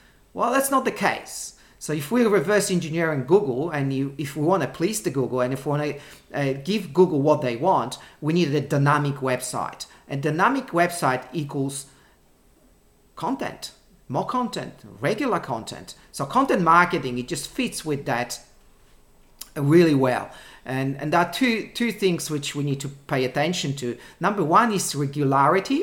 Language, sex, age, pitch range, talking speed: English, male, 40-59, 140-175 Hz, 165 wpm